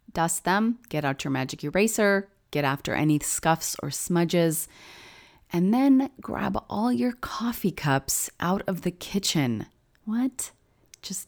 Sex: female